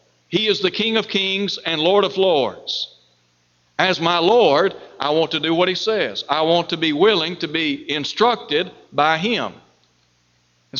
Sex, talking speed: male, 170 wpm